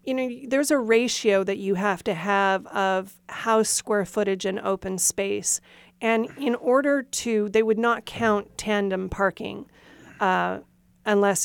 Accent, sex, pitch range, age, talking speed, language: American, female, 190-240 Hz, 40-59, 150 wpm, English